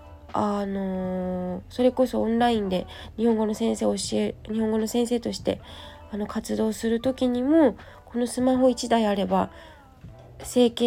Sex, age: female, 20-39